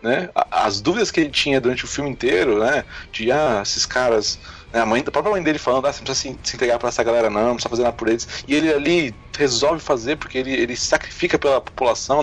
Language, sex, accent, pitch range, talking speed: Portuguese, male, Brazilian, 120-160 Hz, 250 wpm